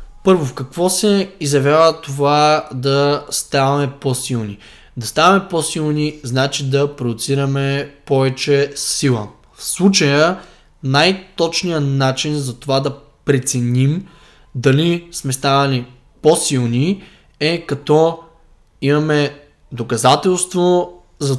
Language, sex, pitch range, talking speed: Bulgarian, male, 135-165 Hz, 95 wpm